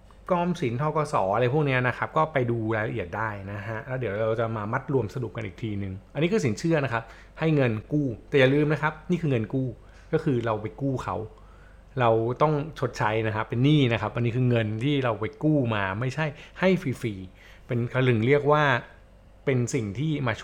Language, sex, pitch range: Thai, male, 110-145 Hz